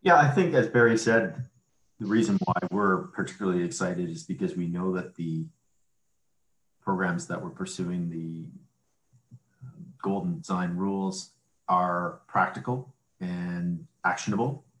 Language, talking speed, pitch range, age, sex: English, 120 wpm, 90-125 Hz, 40-59, male